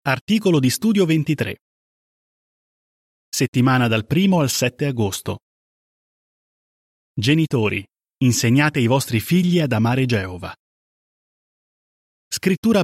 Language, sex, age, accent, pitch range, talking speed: Italian, male, 30-49, native, 115-165 Hz, 90 wpm